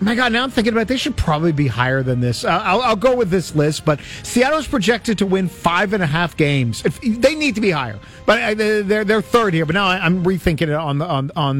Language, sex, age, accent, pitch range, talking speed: English, male, 50-69, American, 170-240 Hz, 255 wpm